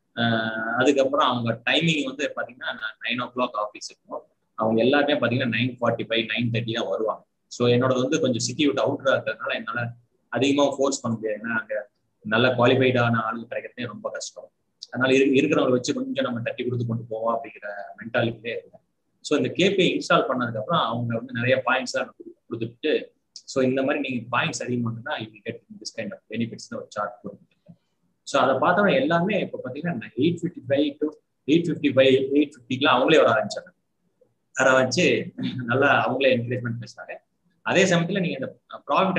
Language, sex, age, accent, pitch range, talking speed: Tamil, male, 20-39, native, 115-145 Hz, 155 wpm